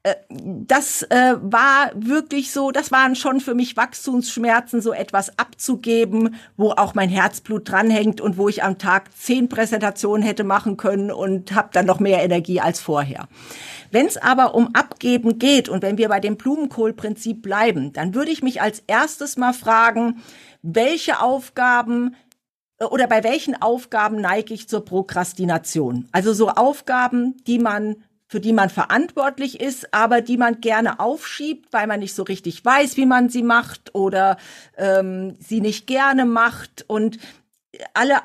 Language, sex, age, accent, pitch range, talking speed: German, female, 50-69, German, 205-250 Hz, 160 wpm